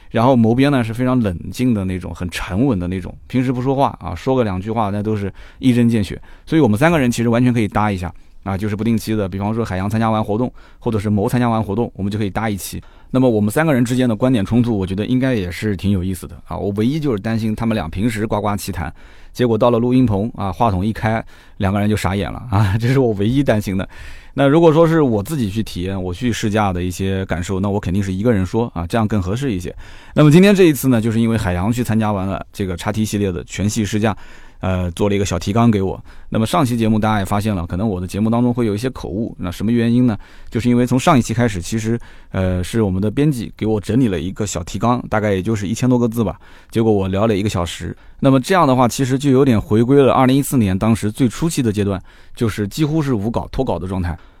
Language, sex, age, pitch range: Chinese, male, 20-39, 95-120 Hz